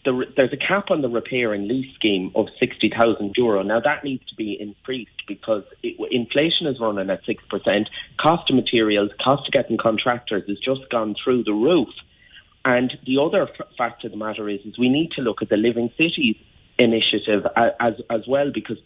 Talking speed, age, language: 195 wpm, 30-49, English